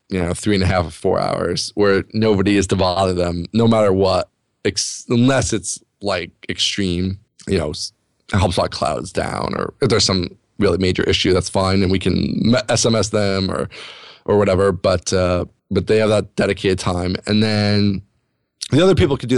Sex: male